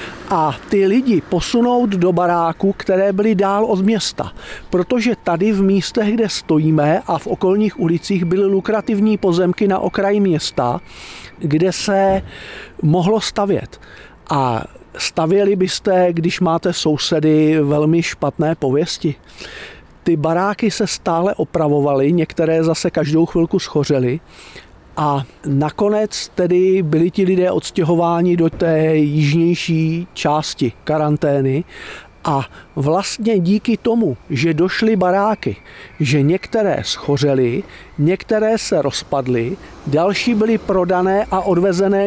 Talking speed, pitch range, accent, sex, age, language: 115 wpm, 160-200 Hz, native, male, 50-69, Czech